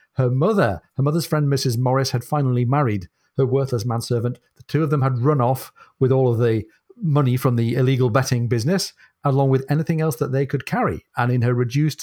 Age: 40-59